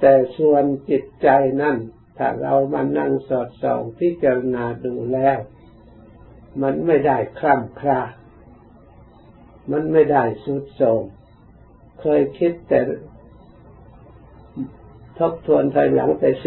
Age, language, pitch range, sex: 60-79, Thai, 115-150 Hz, male